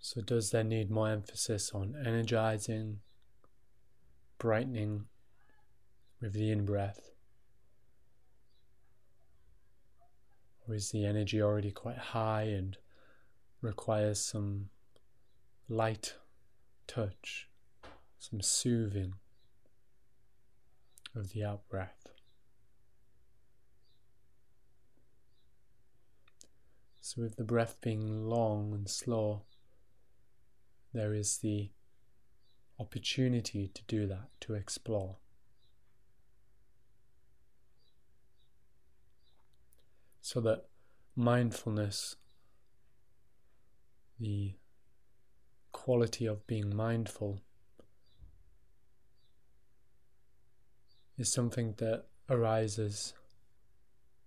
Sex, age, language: male, 20-39, English